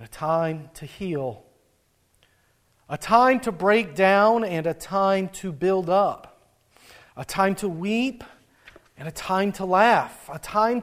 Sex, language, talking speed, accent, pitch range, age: male, English, 145 wpm, American, 145-210 Hz, 40-59